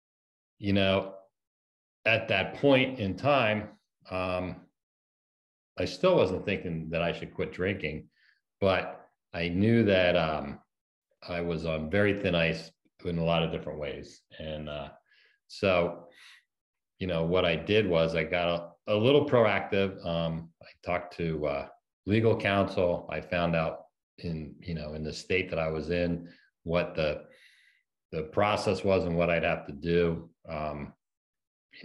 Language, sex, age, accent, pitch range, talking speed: English, male, 40-59, American, 75-90 Hz, 155 wpm